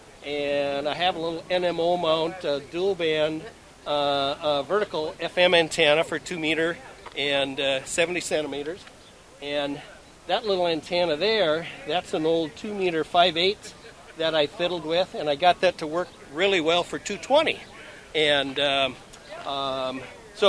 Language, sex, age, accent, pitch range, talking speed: English, male, 60-79, American, 145-180 Hz, 150 wpm